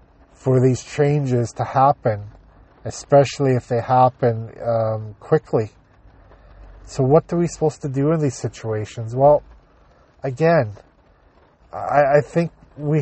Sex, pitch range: male, 115-140 Hz